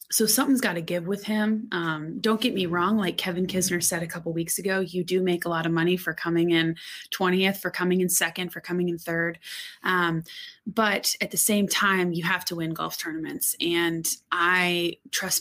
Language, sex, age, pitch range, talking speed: English, female, 20-39, 170-200 Hz, 205 wpm